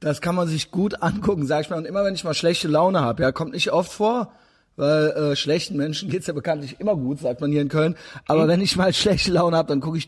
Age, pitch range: 30-49, 150-185 Hz